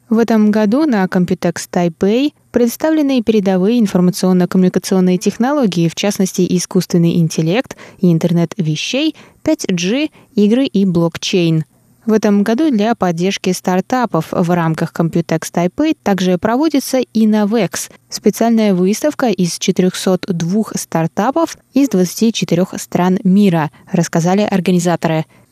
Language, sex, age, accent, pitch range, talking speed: Russian, female, 20-39, native, 180-225 Hz, 105 wpm